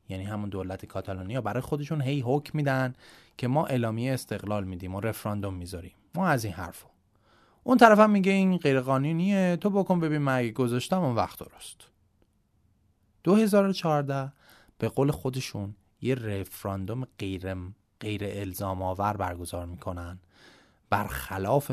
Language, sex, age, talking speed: Persian, male, 30-49, 135 wpm